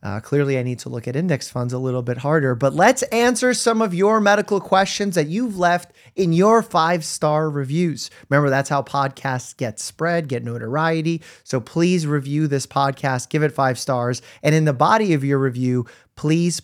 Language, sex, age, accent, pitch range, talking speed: English, male, 30-49, American, 130-175 Hz, 190 wpm